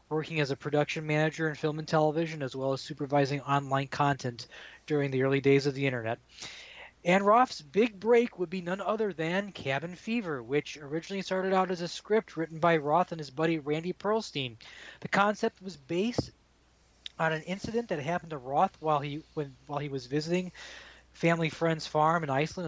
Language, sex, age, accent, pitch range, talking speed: English, male, 20-39, American, 145-195 Hz, 190 wpm